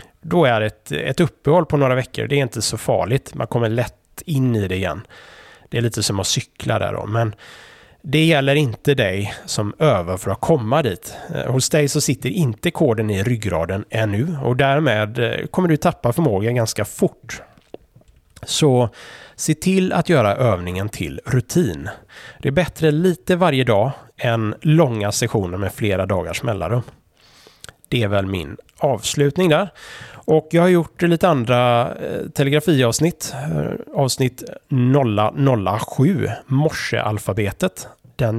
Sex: male